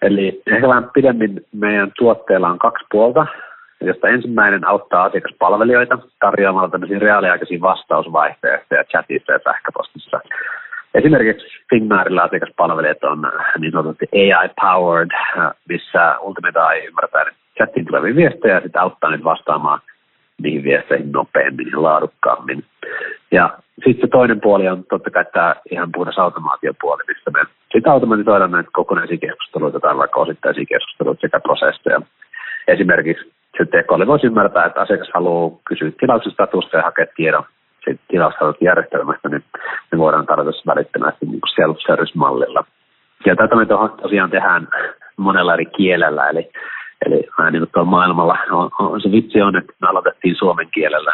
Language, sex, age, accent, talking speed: Finnish, male, 30-49, native, 130 wpm